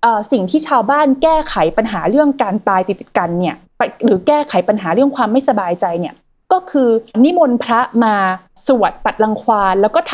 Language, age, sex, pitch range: Thai, 20-39, female, 215-290 Hz